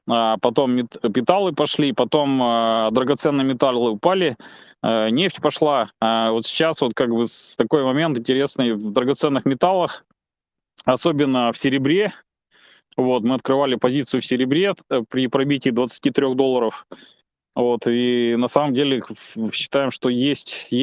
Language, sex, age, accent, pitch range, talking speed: Russian, male, 20-39, native, 120-140 Hz, 105 wpm